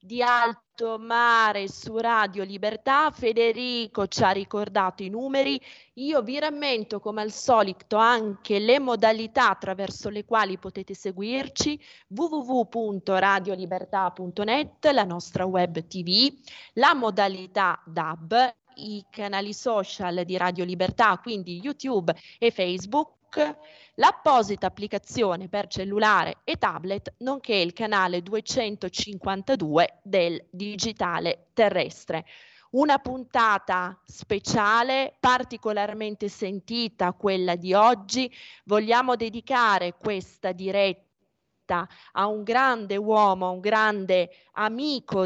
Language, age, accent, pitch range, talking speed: Italian, 20-39, native, 190-235 Hz, 100 wpm